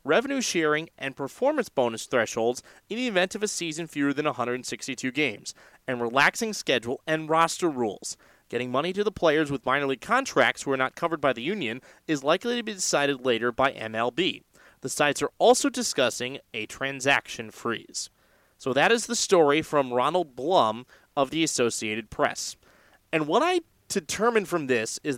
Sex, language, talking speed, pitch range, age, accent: male, English, 175 wpm, 130-175 Hz, 30-49, American